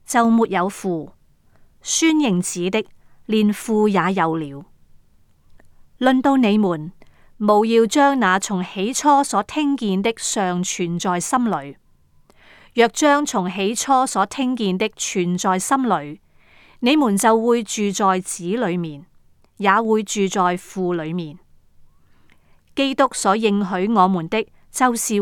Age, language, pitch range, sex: 30-49, Chinese, 180-235 Hz, female